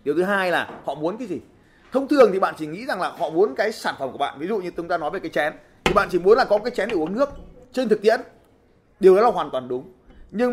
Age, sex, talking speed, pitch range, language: 20-39, male, 300 wpm, 165-245 Hz, Vietnamese